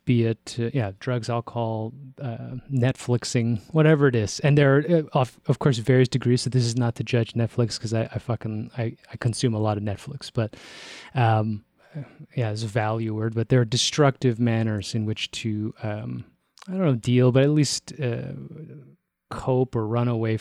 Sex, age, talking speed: male, 20-39, 190 wpm